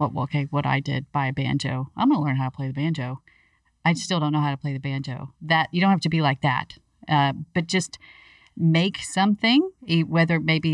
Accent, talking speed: American, 230 wpm